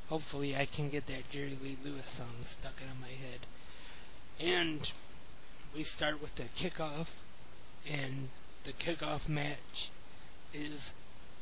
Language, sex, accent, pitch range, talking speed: English, male, American, 135-150 Hz, 125 wpm